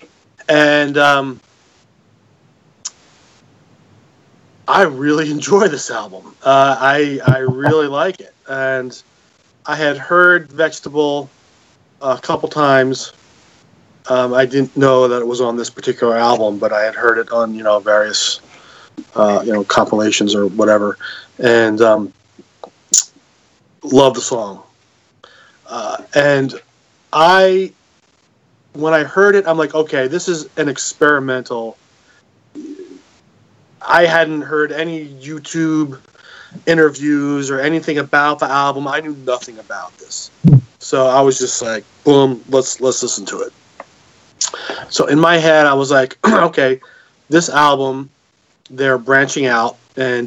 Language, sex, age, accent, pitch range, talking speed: English, male, 30-49, American, 125-150 Hz, 130 wpm